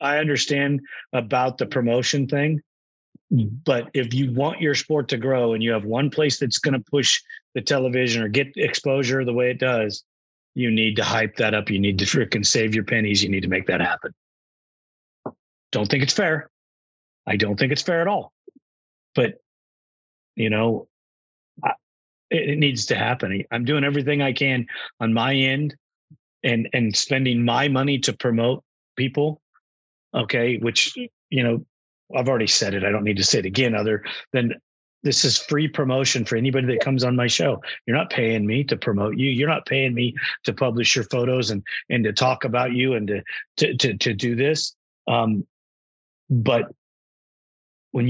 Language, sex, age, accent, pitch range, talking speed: English, male, 30-49, American, 115-140 Hz, 180 wpm